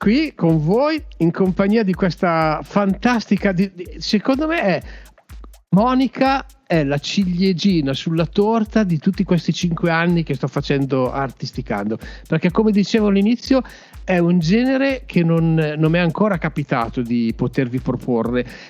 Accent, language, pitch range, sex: native, Italian, 150-200 Hz, male